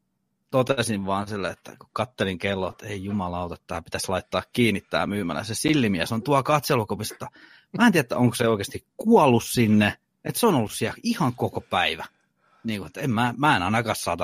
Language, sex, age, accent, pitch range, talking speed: Finnish, male, 30-49, native, 105-130 Hz, 200 wpm